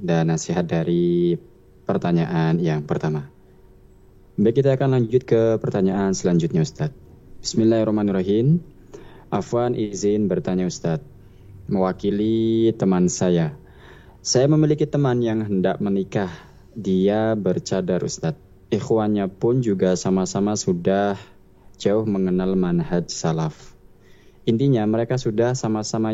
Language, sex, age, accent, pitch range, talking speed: Indonesian, male, 20-39, native, 95-120 Hz, 100 wpm